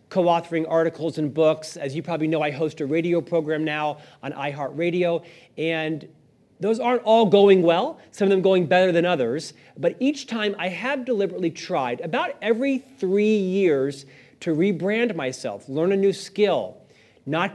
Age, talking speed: 40-59, 165 wpm